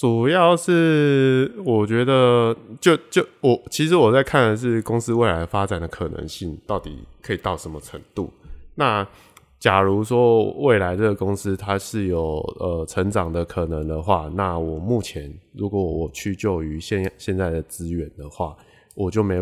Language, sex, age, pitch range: Chinese, male, 20-39, 85-110 Hz